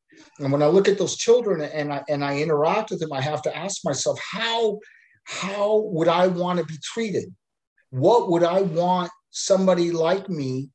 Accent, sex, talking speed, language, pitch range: American, male, 190 wpm, English, 130-165 Hz